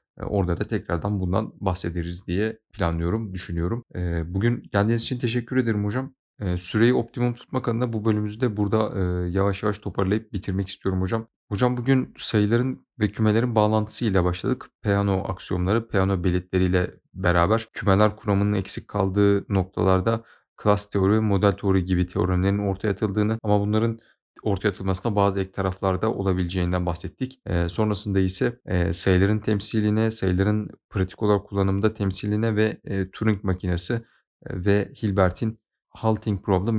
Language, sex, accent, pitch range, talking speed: Turkish, male, native, 95-110 Hz, 135 wpm